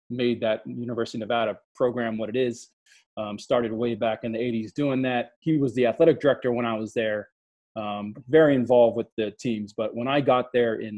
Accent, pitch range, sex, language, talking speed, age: American, 110-125 Hz, male, English, 215 wpm, 20-39